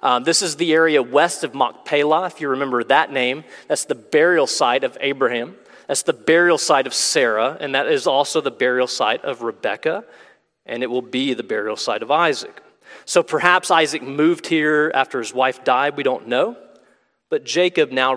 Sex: male